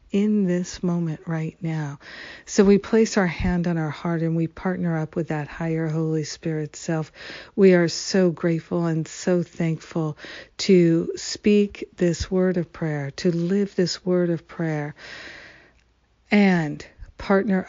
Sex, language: female, English